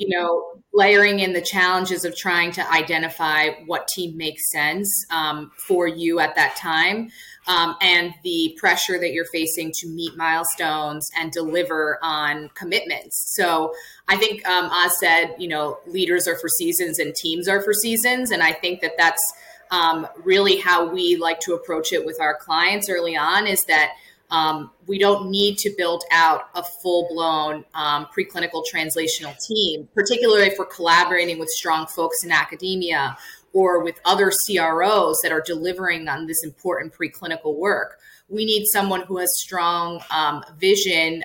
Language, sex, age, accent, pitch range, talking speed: English, female, 20-39, American, 165-195 Hz, 165 wpm